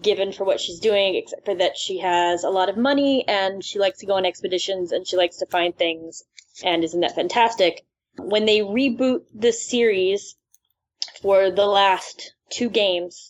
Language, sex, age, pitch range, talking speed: English, female, 20-39, 180-210 Hz, 185 wpm